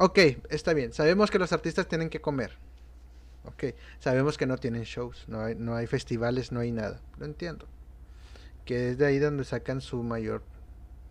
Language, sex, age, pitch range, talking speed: Spanish, male, 30-49, 110-155 Hz, 185 wpm